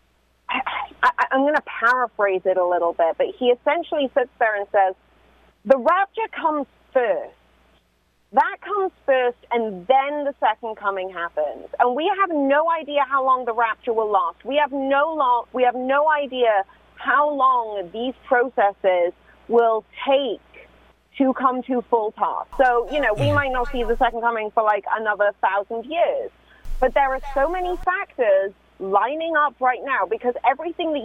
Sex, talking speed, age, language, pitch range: female, 170 wpm, 30-49, English, 215-295 Hz